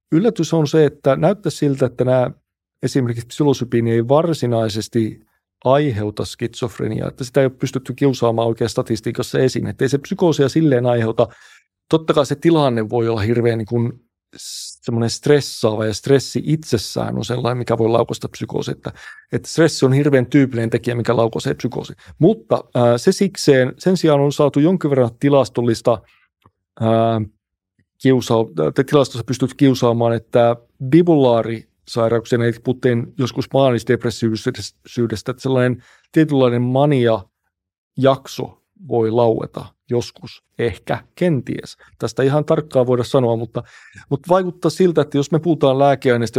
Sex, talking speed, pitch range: male, 130 wpm, 115-140 Hz